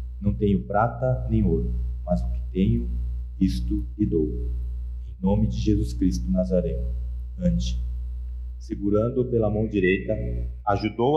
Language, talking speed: Portuguese, 130 wpm